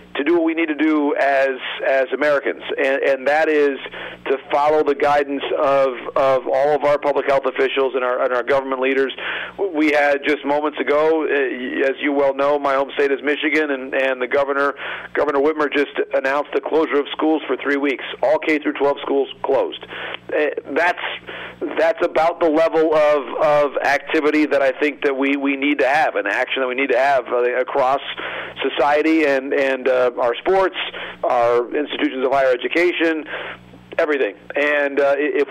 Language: English